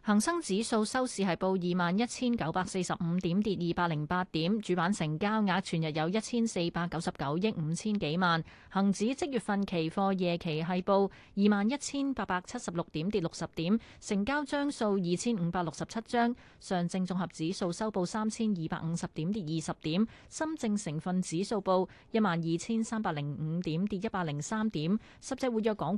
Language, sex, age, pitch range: Chinese, female, 20-39, 170-215 Hz